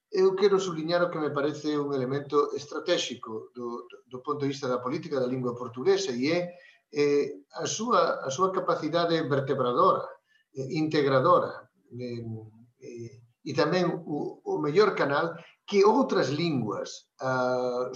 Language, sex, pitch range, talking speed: Portuguese, male, 130-175 Hz, 145 wpm